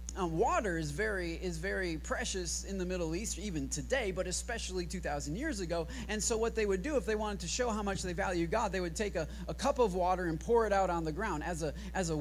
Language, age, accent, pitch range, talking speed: English, 30-49, American, 190-265 Hz, 260 wpm